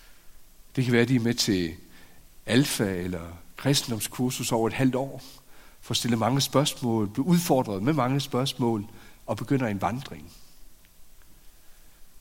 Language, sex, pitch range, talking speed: Danish, male, 100-130 Hz, 140 wpm